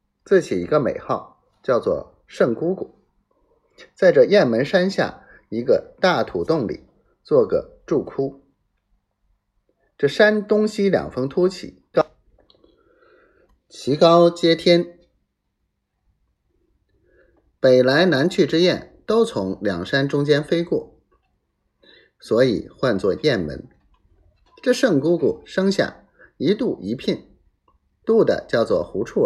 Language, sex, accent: Chinese, male, native